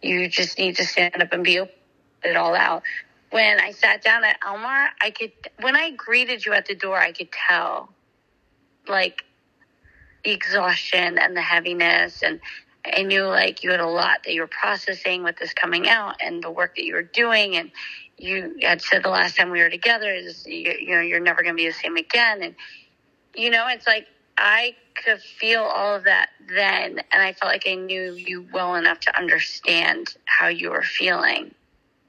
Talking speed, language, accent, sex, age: 200 wpm, English, American, female, 30-49